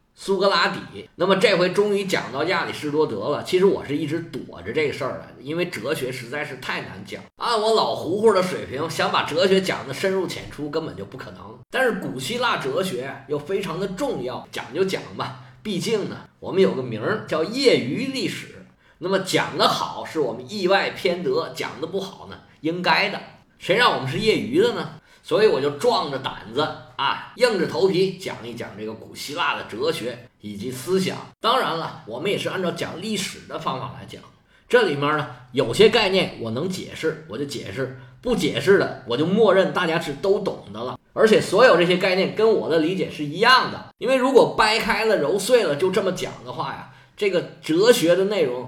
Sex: male